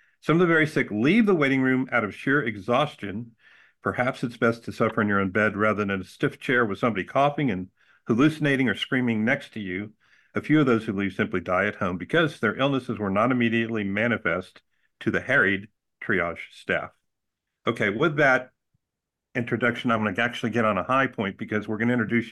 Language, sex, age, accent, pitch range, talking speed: English, male, 50-69, American, 110-140 Hz, 210 wpm